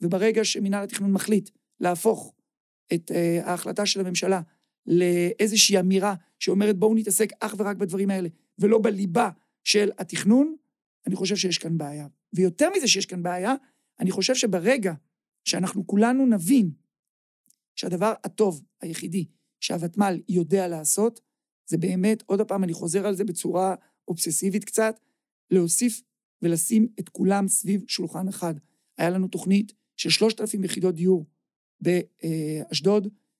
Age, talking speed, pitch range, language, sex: 50-69, 130 wpm, 180-230 Hz, Hebrew, male